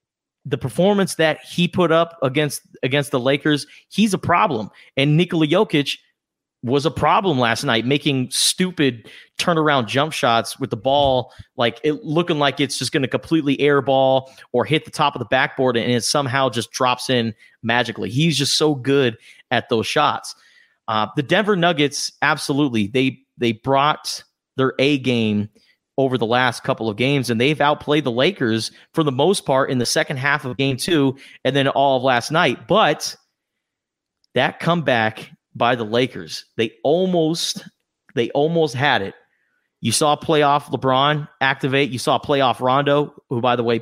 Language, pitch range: English, 120-150 Hz